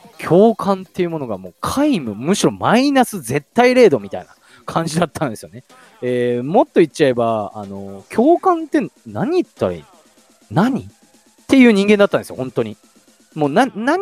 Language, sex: Japanese, male